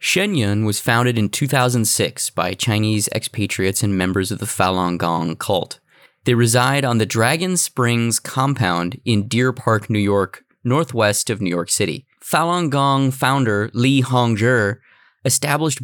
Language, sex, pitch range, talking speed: English, male, 105-140 Hz, 150 wpm